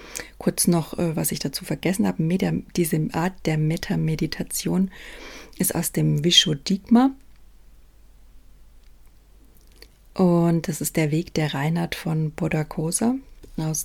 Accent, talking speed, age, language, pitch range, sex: German, 110 wpm, 30-49, German, 155-185 Hz, female